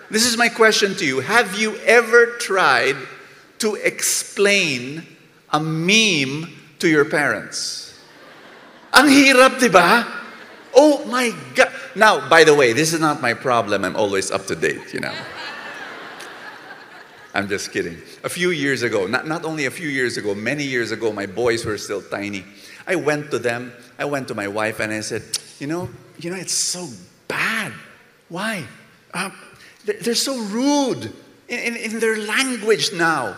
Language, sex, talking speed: English, male, 165 wpm